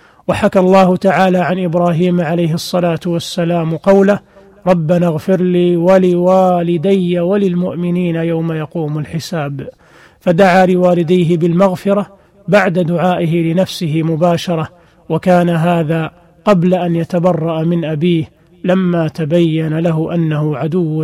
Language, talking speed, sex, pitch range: Arabic, 105 wpm, male, 170-190 Hz